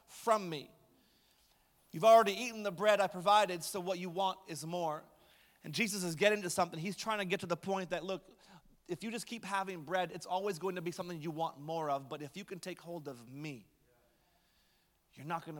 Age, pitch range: 30-49, 155-195 Hz